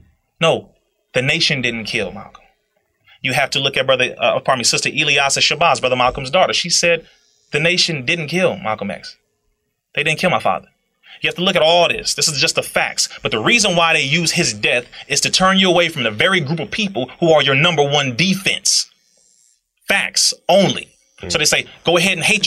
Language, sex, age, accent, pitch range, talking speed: English, male, 30-49, American, 135-175 Hz, 215 wpm